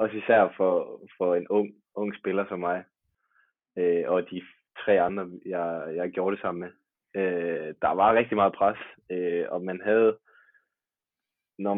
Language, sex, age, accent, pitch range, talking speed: Danish, male, 20-39, native, 95-110 Hz, 165 wpm